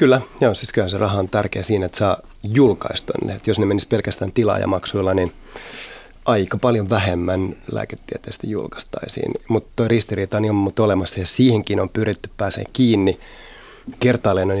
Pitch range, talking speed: 95-115 Hz, 160 wpm